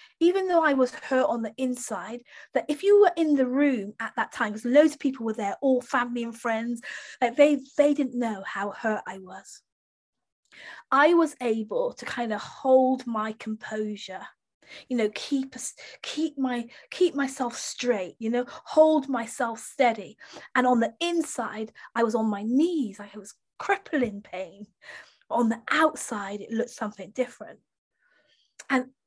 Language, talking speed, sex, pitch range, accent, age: English, 165 wpm, female, 225-295 Hz, British, 20-39